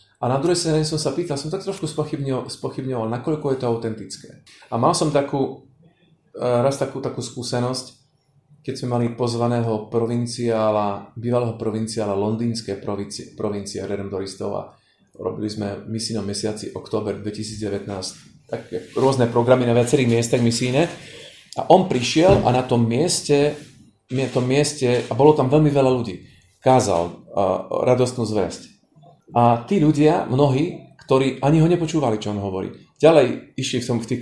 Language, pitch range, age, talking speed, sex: Slovak, 115-140 Hz, 30-49, 145 wpm, male